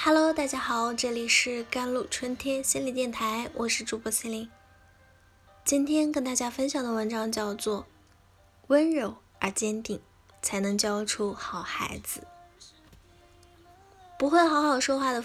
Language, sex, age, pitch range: Chinese, female, 10-29, 200-270 Hz